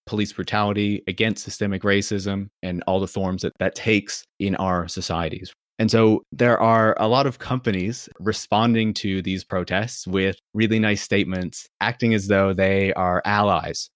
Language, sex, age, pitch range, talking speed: English, male, 30-49, 95-110 Hz, 160 wpm